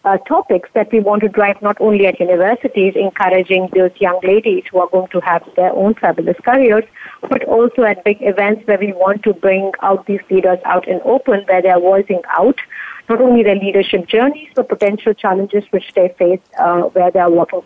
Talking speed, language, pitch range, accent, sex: 205 wpm, English, 195-235 Hz, Indian, female